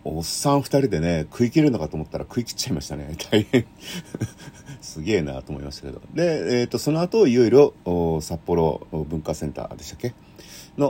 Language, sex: Japanese, male